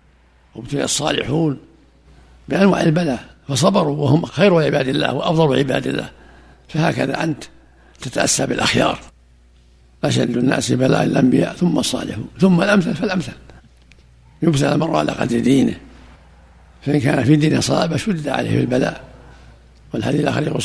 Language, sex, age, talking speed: Arabic, male, 60-79, 120 wpm